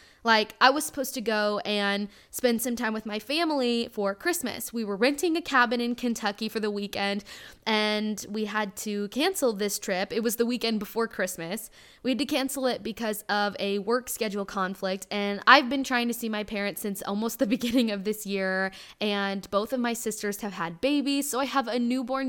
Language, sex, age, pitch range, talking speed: English, female, 10-29, 205-250 Hz, 205 wpm